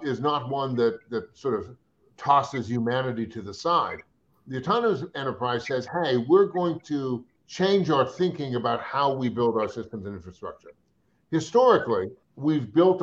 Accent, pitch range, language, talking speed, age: American, 125-165 Hz, English, 155 wpm, 50-69